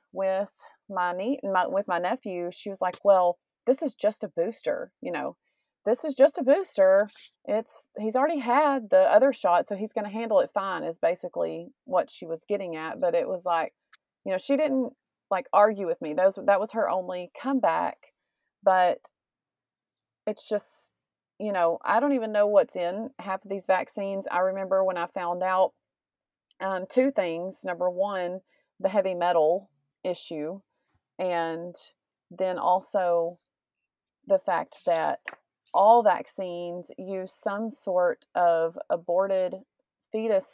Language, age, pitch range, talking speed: English, 30-49, 175-225 Hz, 160 wpm